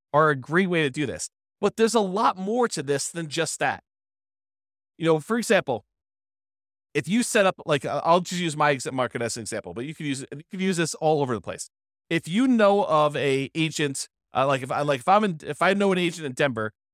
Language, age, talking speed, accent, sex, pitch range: English, 30-49, 240 wpm, American, male, 140-185 Hz